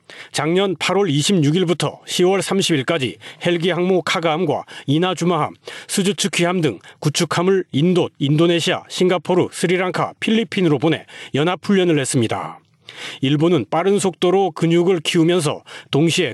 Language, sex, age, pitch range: Korean, male, 40-59, 150-180 Hz